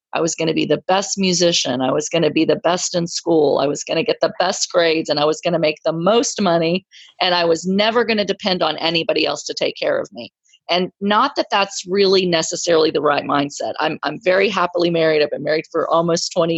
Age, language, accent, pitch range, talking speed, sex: 40-59, English, American, 165-195 Hz, 250 wpm, female